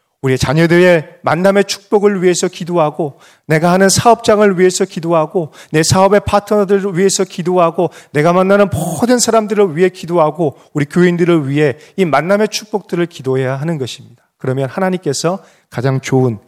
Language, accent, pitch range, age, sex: Korean, native, 140-195 Hz, 30-49, male